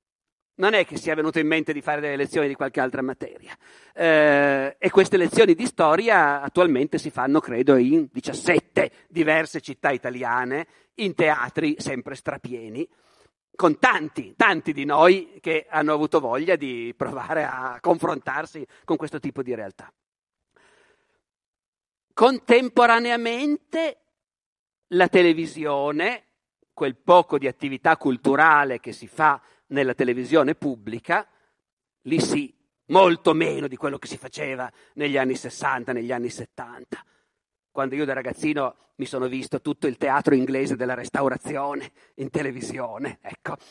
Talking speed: 135 wpm